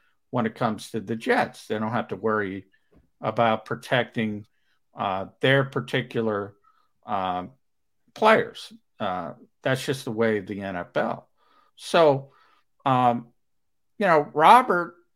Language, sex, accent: English, male, American